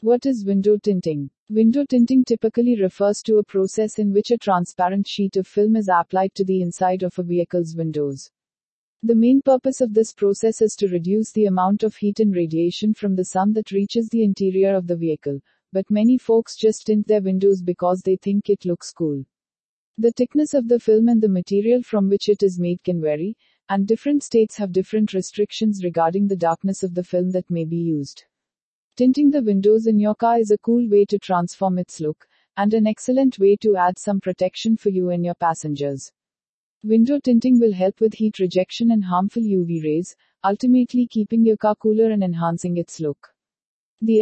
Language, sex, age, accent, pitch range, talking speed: English, female, 50-69, Indian, 180-220 Hz, 195 wpm